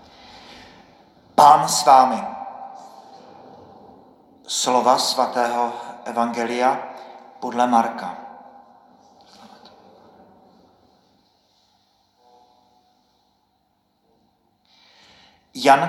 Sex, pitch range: male, 115-135 Hz